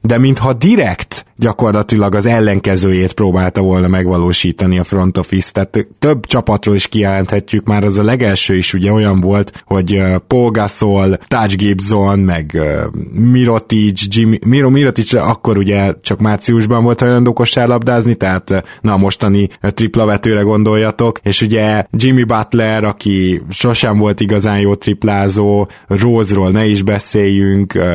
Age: 20-39